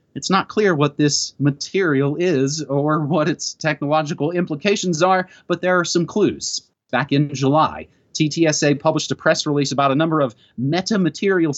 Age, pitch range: 30-49, 140-185 Hz